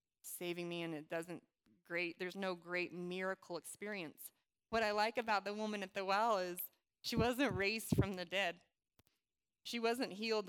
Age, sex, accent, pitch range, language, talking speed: 20-39, female, American, 180-215 Hz, English, 170 wpm